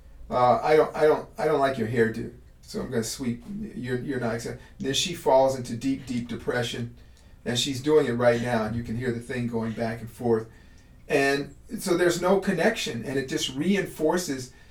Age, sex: 40-59, male